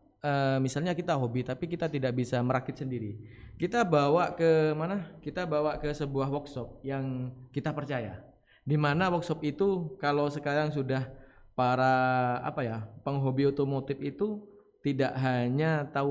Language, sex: Indonesian, male